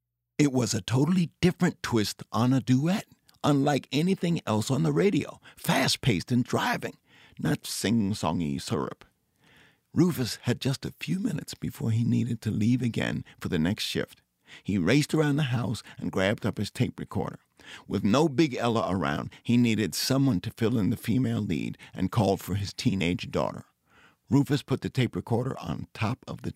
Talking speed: 175 wpm